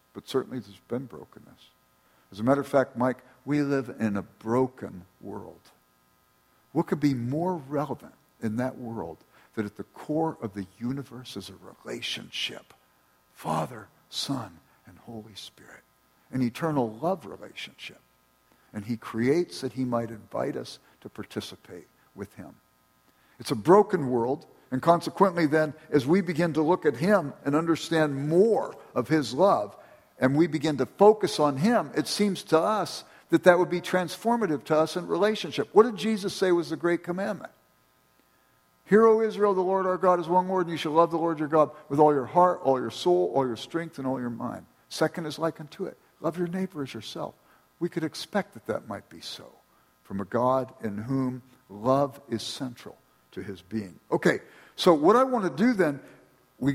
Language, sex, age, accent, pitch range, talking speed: English, male, 60-79, American, 115-175 Hz, 185 wpm